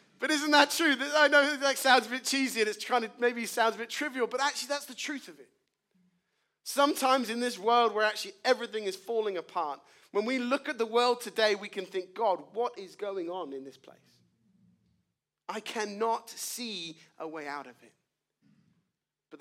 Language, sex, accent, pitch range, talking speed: English, male, British, 170-225 Hz, 200 wpm